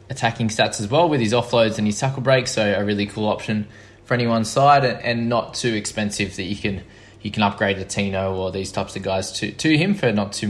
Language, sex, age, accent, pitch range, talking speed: English, male, 20-39, Australian, 105-120 Hz, 240 wpm